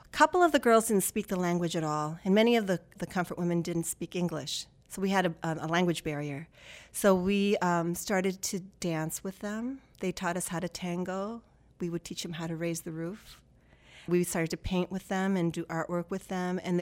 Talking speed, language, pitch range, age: 225 wpm, English, 165-185 Hz, 40-59